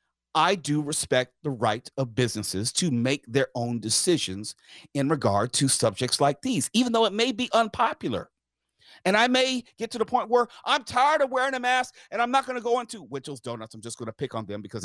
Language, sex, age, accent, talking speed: English, male, 50-69, American, 220 wpm